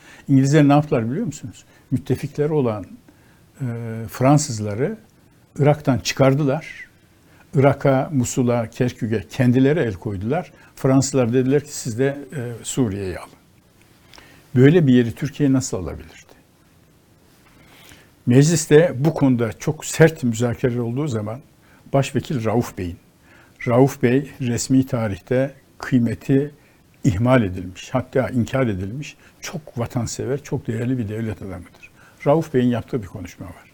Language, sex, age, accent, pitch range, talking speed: Turkish, male, 60-79, native, 120-145 Hz, 110 wpm